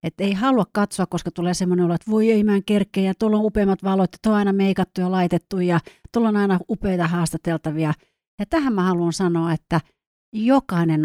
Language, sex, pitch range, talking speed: Finnish, female, 165-205 Hz, 190 wpm